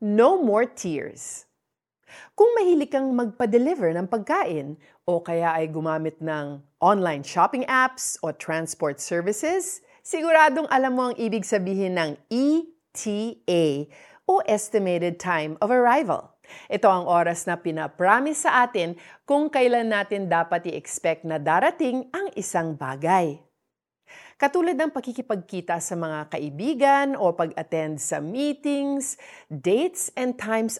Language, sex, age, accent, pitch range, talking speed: Filipino, female, 40-59, native, 170-265 Hz, 125 wpm